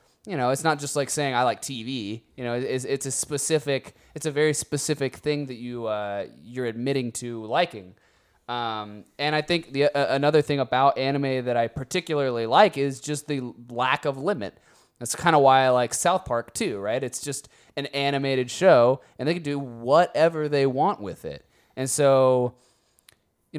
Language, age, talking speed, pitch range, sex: English, 20-39, 190 wpm, 120-145 Hz, male